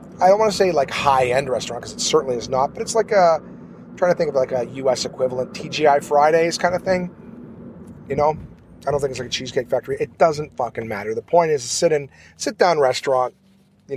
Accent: American